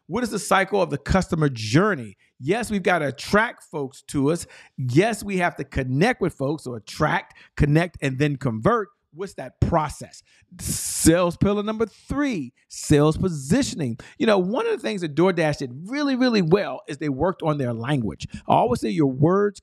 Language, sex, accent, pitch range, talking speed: English, male, American, 140-195 Hz, 185 wpm